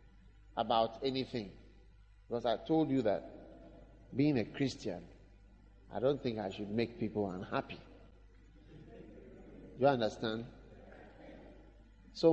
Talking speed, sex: 100 wpm, male